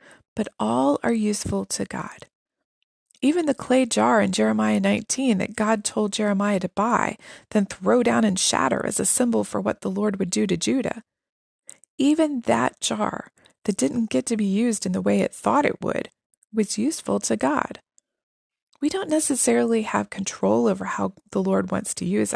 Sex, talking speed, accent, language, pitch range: female, 180 wpm, American, English, 200-270 Hz